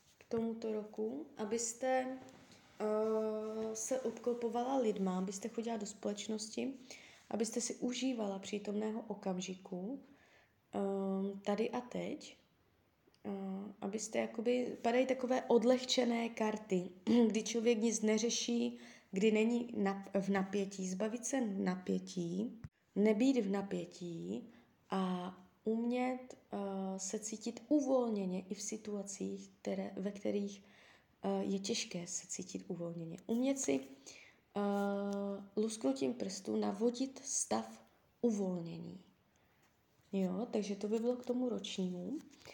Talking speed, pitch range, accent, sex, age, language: 105 wpm, 190-235 Hz, native, female, 20-39, Czech